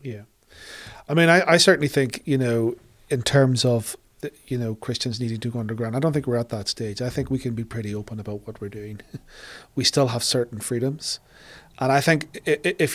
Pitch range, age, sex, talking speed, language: 115-145 Hz, 40-59, male, 215 wpm, English